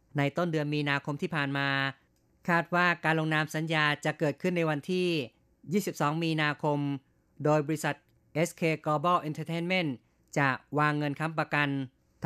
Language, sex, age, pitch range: Thai, female, 30-49, 145-165 Hz